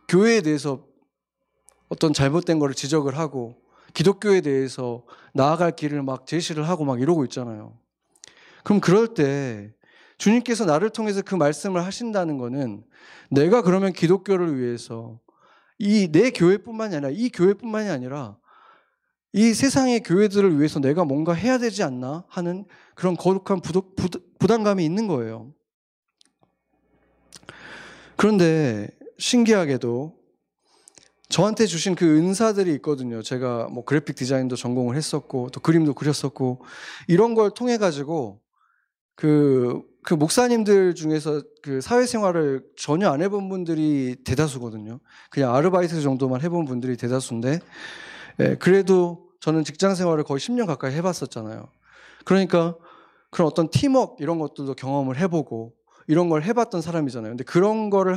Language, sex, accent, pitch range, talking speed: English, male, Korean, 135-195 Hz, 115 wpm